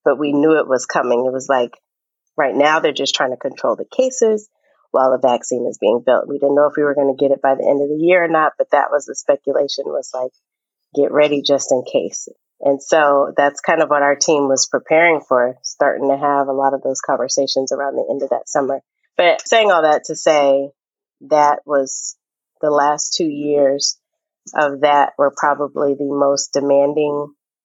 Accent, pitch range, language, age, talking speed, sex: American, 140-150 Hz, English, 30-49, 215 wpm, female